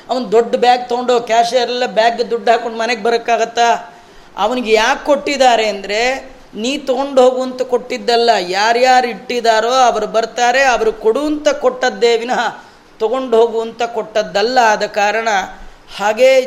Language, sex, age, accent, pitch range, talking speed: Kannada, female, 30-49, native, 230-260 Hz, 120 wpm